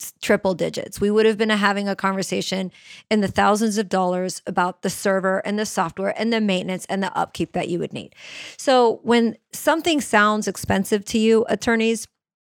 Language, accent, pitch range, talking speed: English, American, 185-215 Hz, 185 wpm